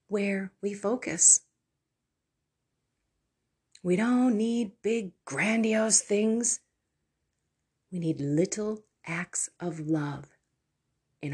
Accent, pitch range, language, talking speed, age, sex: American, 140-190 Hz, English, 85 wpm, 40-59, female